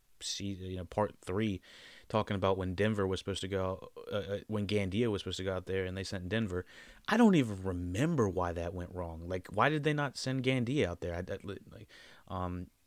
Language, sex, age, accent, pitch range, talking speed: English, male, 30-49, American, 90-115 Hz, 215 wpm